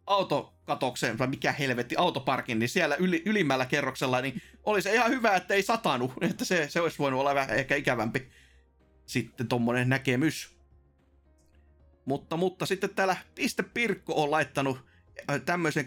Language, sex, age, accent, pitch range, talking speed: Finnish, male, 30-49, native, 130-190 Hz, 145 wpm